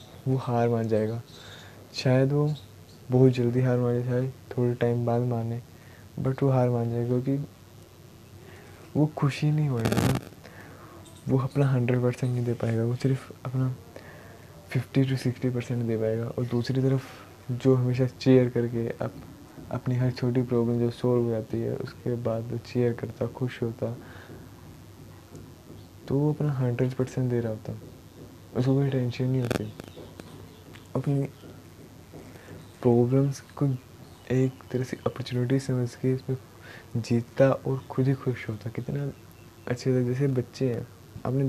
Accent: native